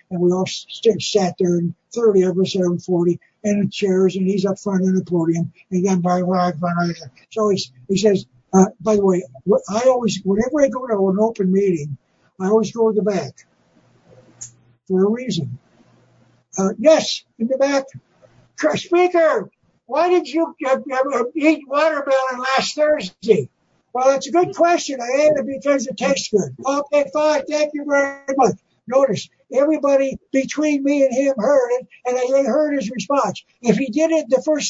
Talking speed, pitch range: 175 wpm, 195-295 Hz